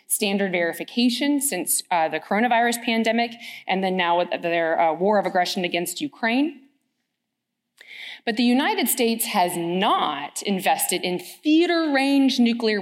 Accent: American